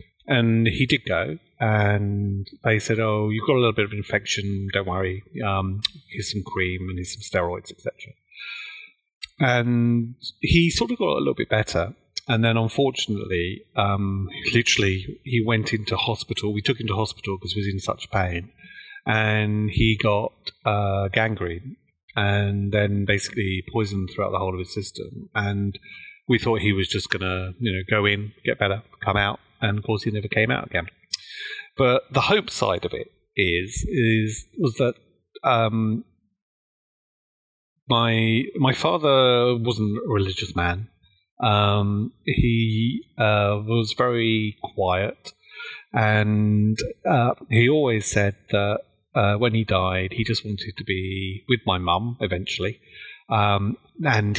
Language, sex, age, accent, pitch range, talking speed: English, male, 30-49, British, 100-115 Hz, 155 wpm